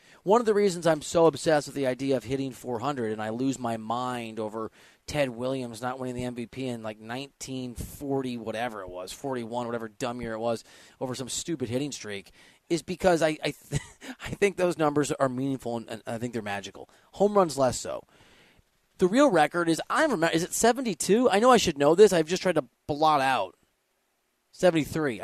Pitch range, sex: 120-175 Hz, male